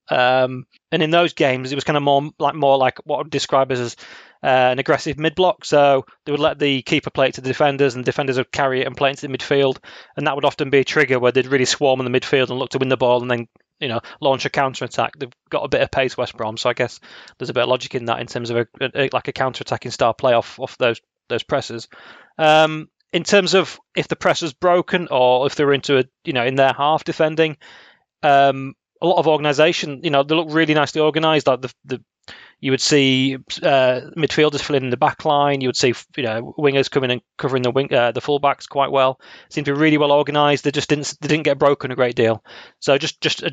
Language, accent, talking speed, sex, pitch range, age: English, British, 255 wpm, male, 130-150 Hz, 20-39